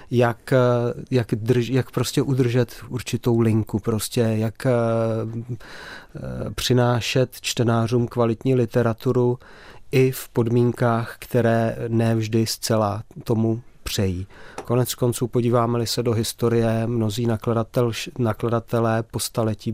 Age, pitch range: 40-59, 110-120 Hz